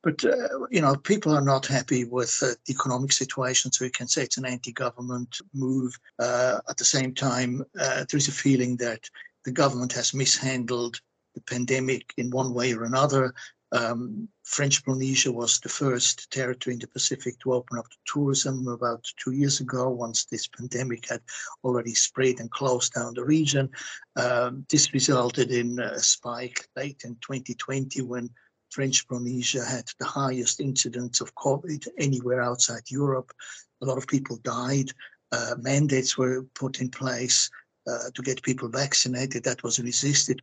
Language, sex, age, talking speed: English, male, 60-79, 170 wpm